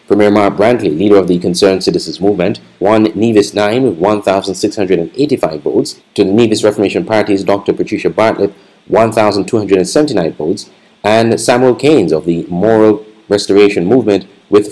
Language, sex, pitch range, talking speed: English, male, 100-115 Hz, 140 wpm